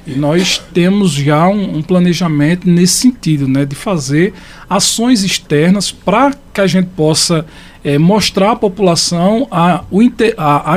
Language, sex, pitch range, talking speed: Portuguese, male, 145-195 Hz, 135 wpm